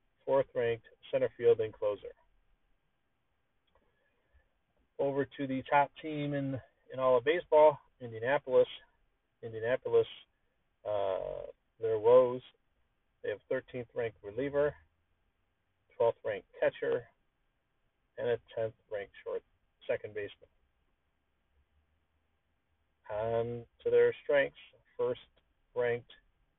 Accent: American